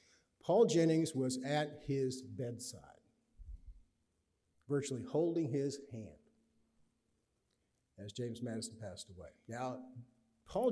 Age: 50-69